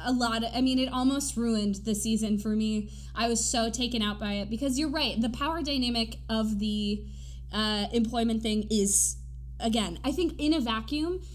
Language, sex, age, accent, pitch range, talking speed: English, female, 20-39, American, 210-280 Hz, 195 wpm